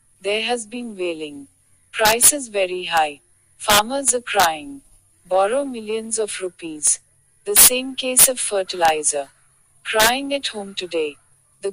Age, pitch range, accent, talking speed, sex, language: 50-69, 155-240 Hz, native, 130 wpm, female, Bengali